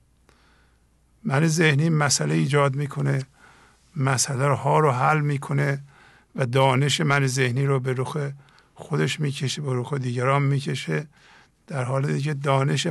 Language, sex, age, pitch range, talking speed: English, male, 50-69, 125-160 Hz, 125 wpm